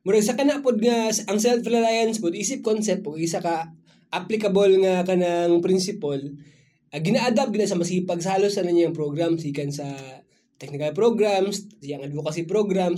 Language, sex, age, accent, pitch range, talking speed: Filipino, male, 20-39, native, 155-195 Hz, 155 wpm